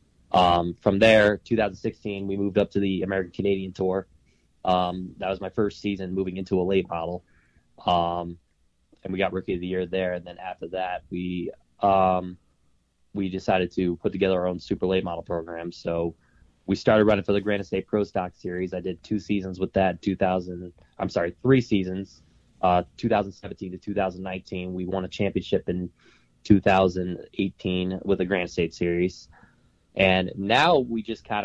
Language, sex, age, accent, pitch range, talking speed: English, male, 20-39, American, 90-100 Hz, 170 wpm